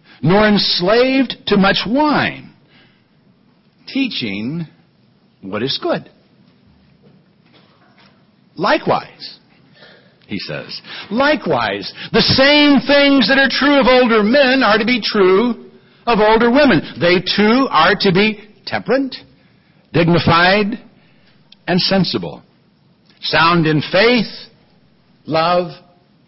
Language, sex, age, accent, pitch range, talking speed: English, male, 60-79, American, 180-245 Hz, 95 wpm